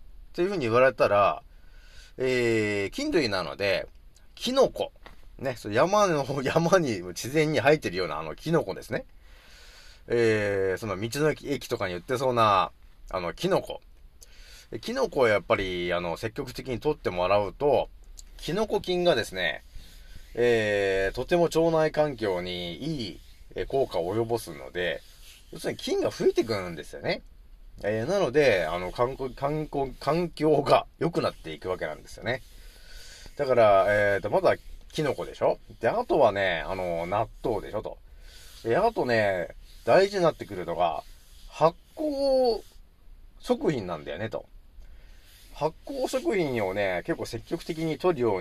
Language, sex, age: Japanese, male, 30-49